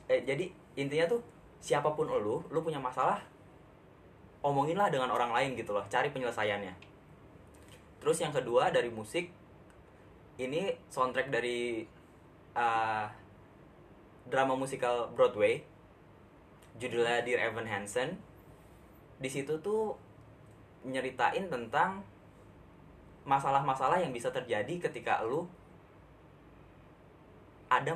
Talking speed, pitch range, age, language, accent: 95 wpm, 110-160 Hz, 10-29, Indonesian, native